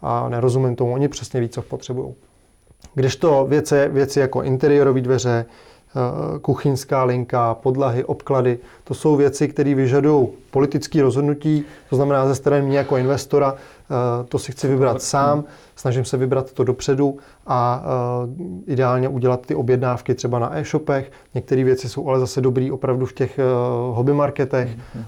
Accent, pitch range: native, 125-140 Hz